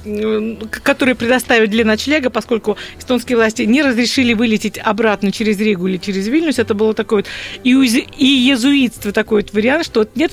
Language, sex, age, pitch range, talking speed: Russian, female, 40-59, 210-255 Hz, 170 wpm